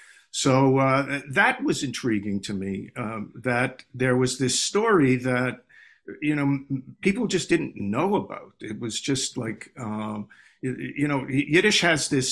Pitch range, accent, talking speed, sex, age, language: 110-135 Hz, American, 155 wpm, male, 50-69, English